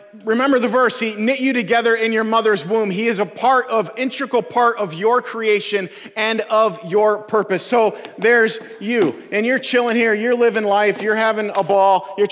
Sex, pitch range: male, 205-245 Hz